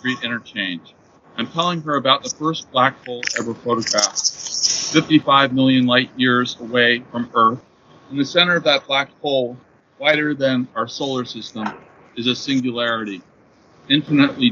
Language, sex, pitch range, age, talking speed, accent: English, male, 120-150 Hz, 40-59, 140 wpm, American